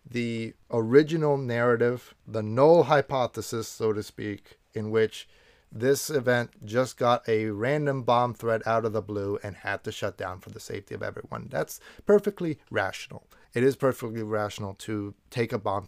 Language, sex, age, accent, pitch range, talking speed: English, male, 30-49, American, 110-140 Hz, 165 wpm